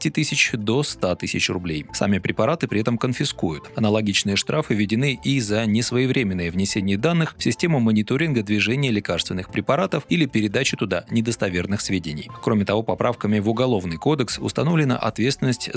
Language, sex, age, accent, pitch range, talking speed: Russian, male, 30-49, native, 95-125 Hz, 140 wpm